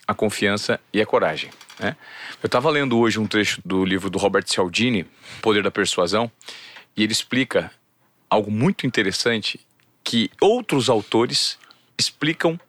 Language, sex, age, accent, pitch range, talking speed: Portuguese, male, 40-59, Brazilian, 105-150 Hz, 145 wpm